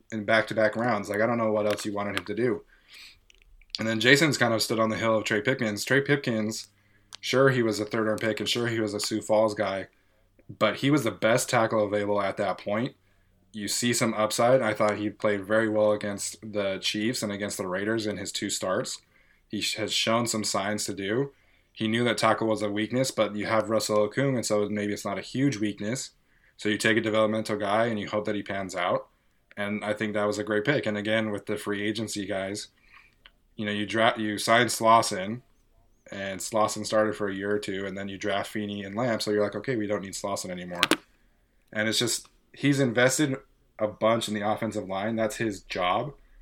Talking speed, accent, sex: 225 wpm, American, male